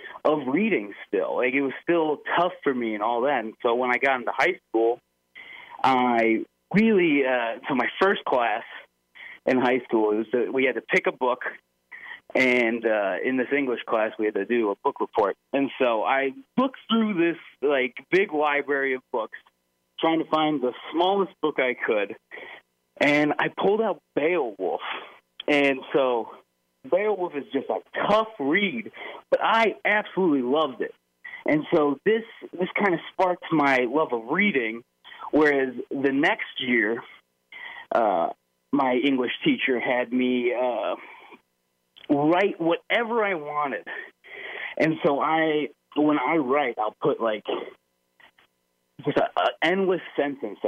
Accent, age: American, 30-49